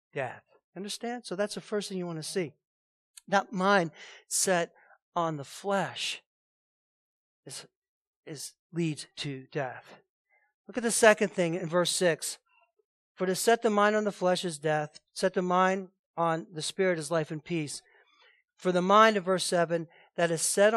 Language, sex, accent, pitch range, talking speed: English, male, American, 175-225 Hz, 170 wpm